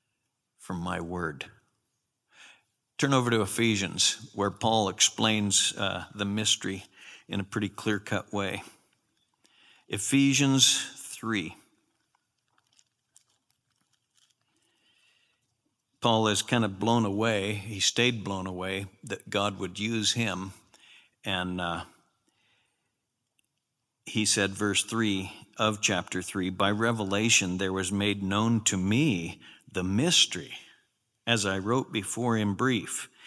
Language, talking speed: English, 110 wpm